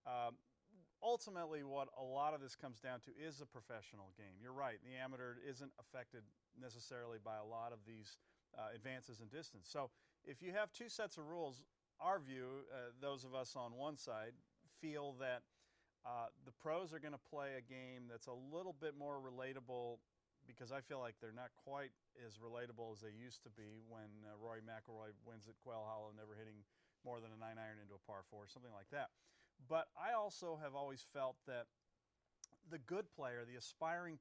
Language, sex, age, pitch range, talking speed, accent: English, male, 40-59, 115-145 Hz, 195 wpm, American